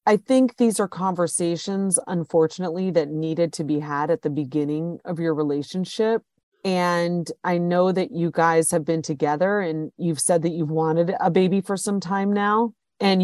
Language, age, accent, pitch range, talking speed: English, 40-59, American, 160-190 Hz, 175 wpm